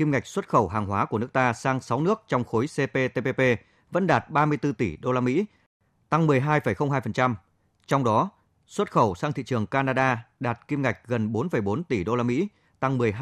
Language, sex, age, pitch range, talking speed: Vietnamese, male, 20-39, 105-140 Hz, 190 wpm